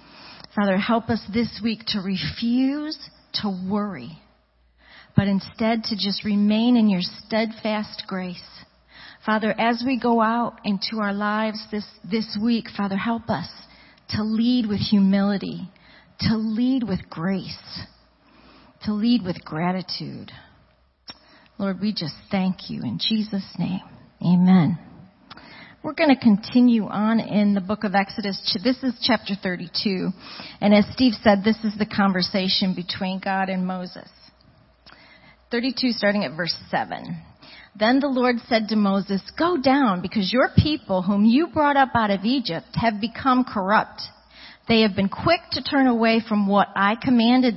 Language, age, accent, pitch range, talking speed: English, 40-59, American, 195-240 Hz, 145 wpm